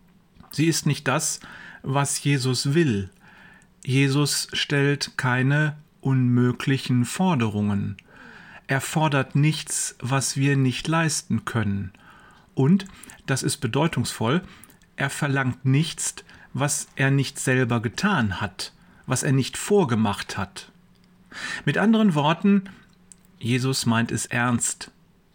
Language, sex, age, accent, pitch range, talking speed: German, male, 40-59, German, 125-165 Hz, 105 wpm